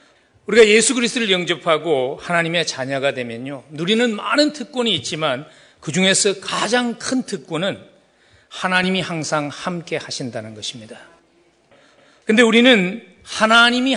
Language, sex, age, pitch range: Korean, male, 40-59, 160-235 Hz